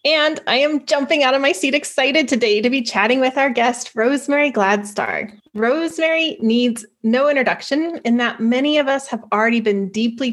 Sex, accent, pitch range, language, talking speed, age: female, American, 210-270 Hz, English, 180 wpm, 20-39